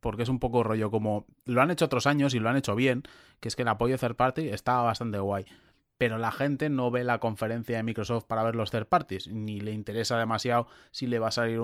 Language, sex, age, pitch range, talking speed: Spanish, male, 20-39, 110-130 Hz, 260 wpm